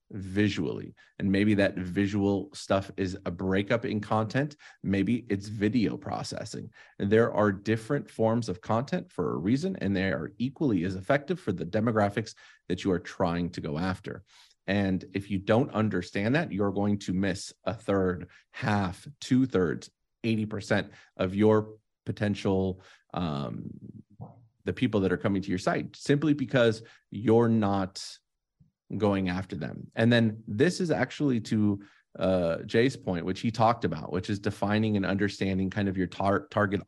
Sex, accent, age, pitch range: male, American, 30-49, 95-115 Hz